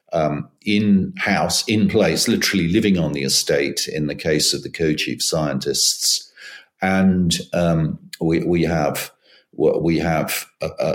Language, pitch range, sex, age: English, 75-95 Hz, male, 50-69